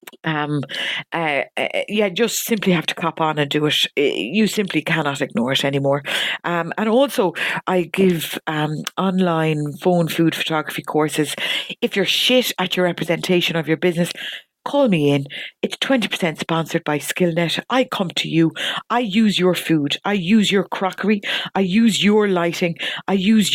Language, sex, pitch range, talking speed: English, female, 165-205 Hz, 165 wpm